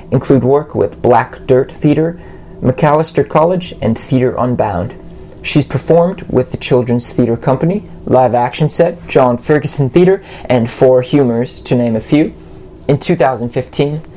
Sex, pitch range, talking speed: male, 125-155 Hz, 140 wpm